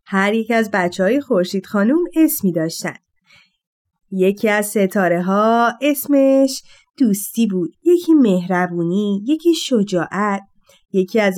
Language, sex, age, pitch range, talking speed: Persian, female, 30-49, 190-280 Hz, 115 wpm